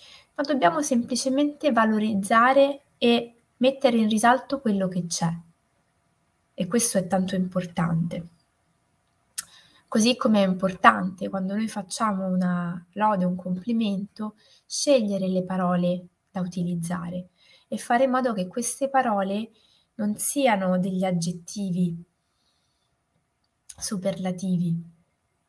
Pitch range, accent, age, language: 185-230 Hz, native, 20-39, Italian